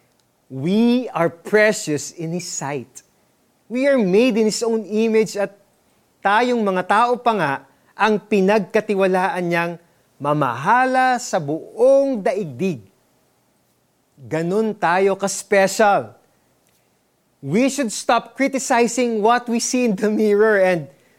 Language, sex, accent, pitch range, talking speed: Filipino, male, native, 150-220 Hz, 115 wpm